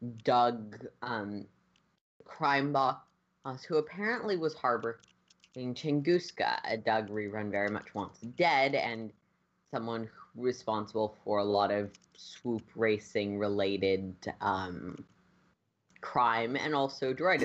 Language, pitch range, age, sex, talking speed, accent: English, 110-150 Hz, 20-39, female, 105 wpm, American